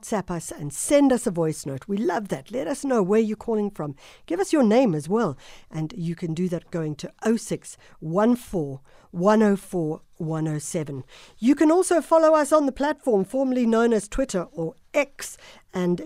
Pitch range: 165-235 Hz